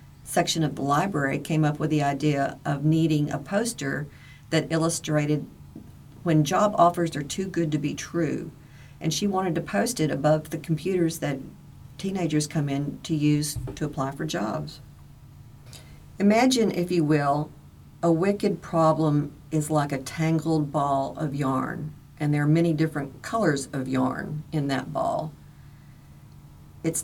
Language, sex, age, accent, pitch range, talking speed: English, female, 50-69, American, 140-165 Hz, 155 wpm